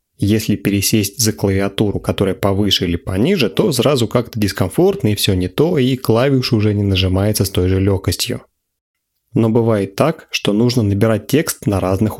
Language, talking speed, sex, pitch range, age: Russian, 165 wpm, male, 95-120 Hz, 30-49